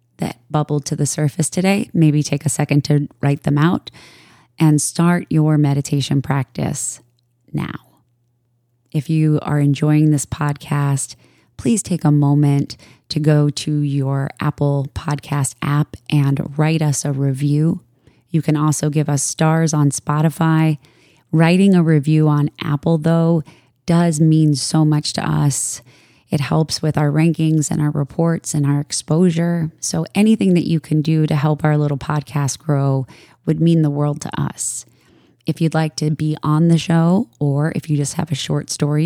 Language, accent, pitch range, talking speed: English, American, 145-160 Hz, 165 wpm